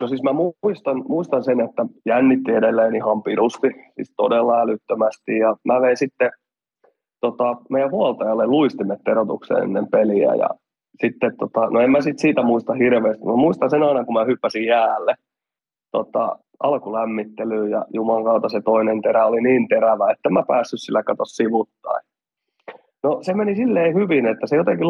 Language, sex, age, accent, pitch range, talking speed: Finnish, male, 20-39, native, 110-135 Hz, 165 wpm